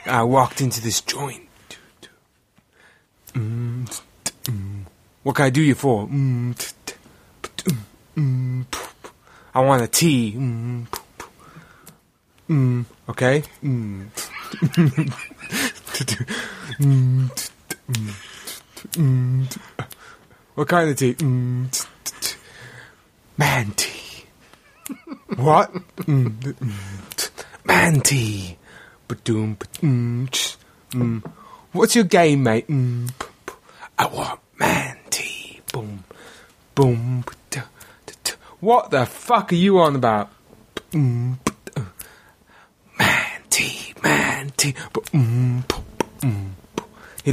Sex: male